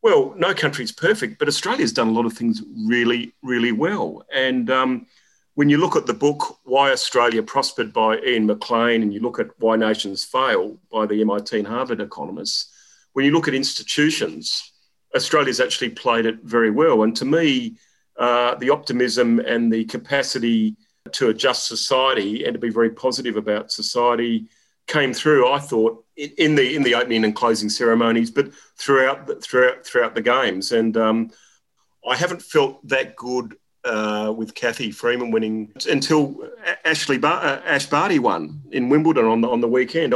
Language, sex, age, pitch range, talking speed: English, male, 40-59, 115-150 Hz, 170 wpm